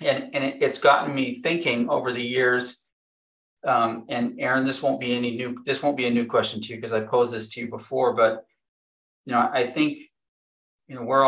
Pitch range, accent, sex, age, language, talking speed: 115-125 Hz, American, male, 30-49, English, 220 wpm